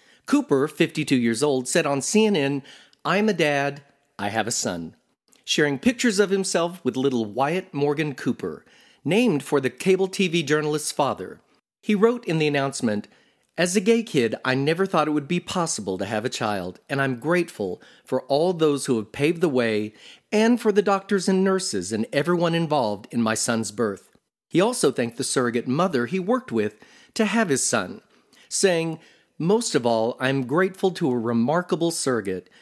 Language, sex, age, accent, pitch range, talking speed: English, male, 40-59, American, 120-180 Hz, 180 wpm